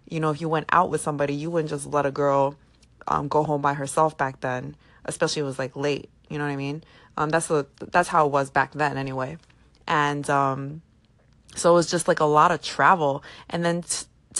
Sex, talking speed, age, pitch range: female, 235 wpm, 20-39, 145-170 Hz